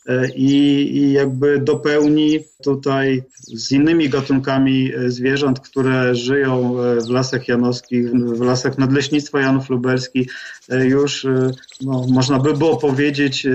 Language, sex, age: Polish, male, 40-59